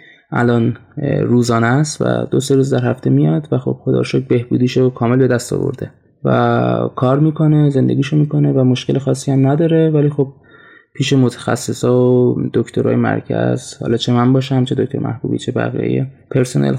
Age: 20-39